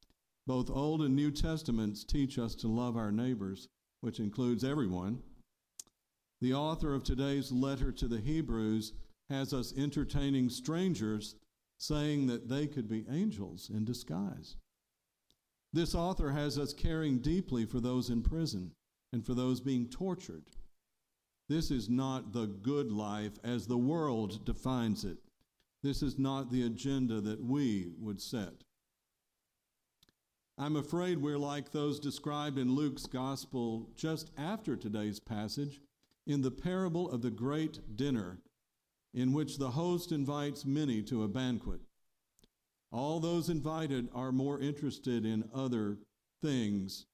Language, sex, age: English, male, 50-69